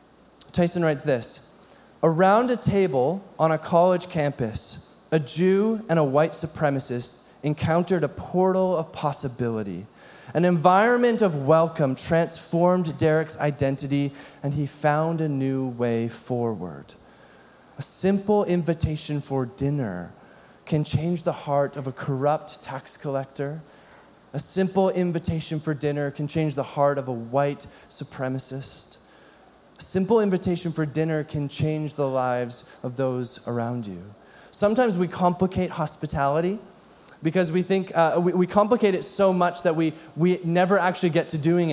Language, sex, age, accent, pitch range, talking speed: English, male, 20-39, American, 145-190 Hz, 140 wpm